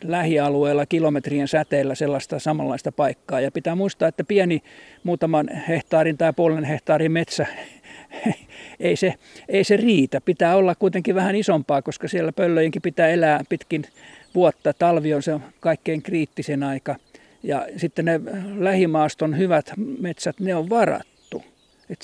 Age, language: 50-69, Finnish